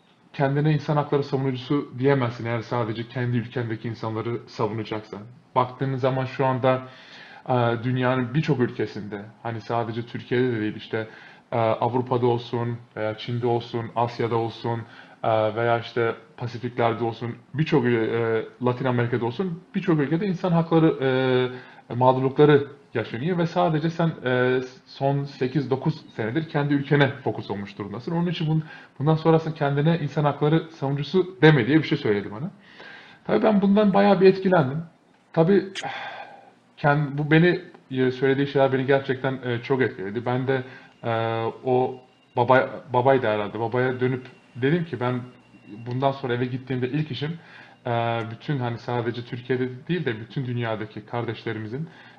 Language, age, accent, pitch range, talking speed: Turkish, 20-39, native, 120-150 Hz, 135 wpm